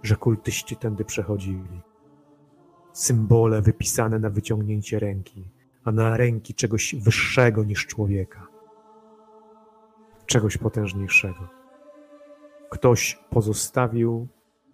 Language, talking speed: Polish, 80 wpm